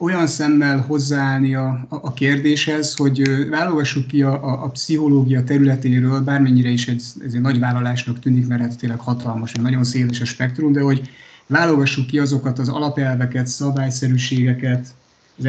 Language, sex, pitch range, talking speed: Hungarian, male, 120-140 Hz, 155 wpm